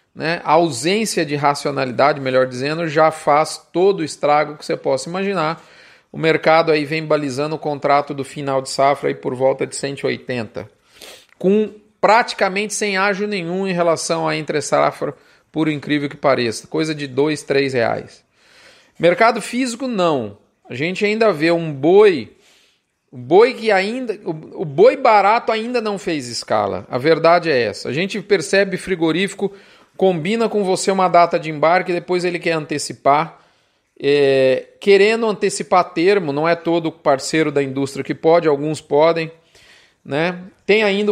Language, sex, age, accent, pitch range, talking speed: Portuguese, male, 40-59, Brazilian, 155-210 Hz, 155 wpm